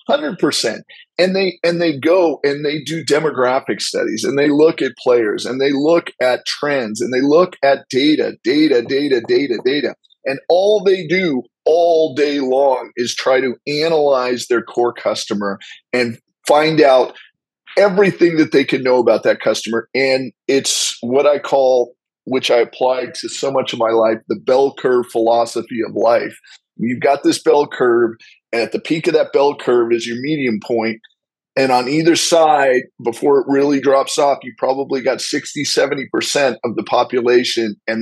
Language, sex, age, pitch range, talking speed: English, male, 40-59, 125-165 Hz, 170 wpm